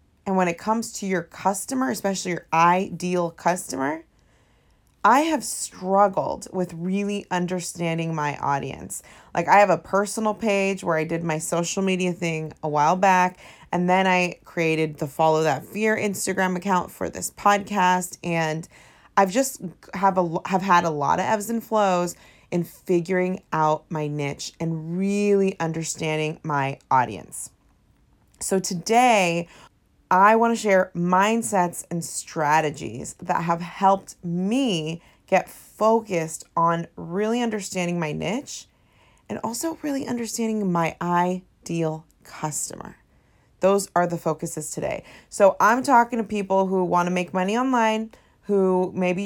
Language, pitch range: English, 165-200 Hz